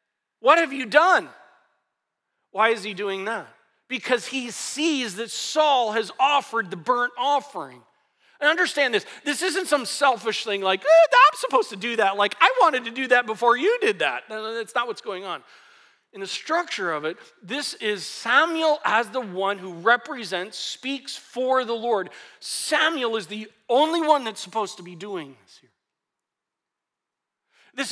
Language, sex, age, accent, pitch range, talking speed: English, male, 40-59, American, 190-270 Hz, 170 wpm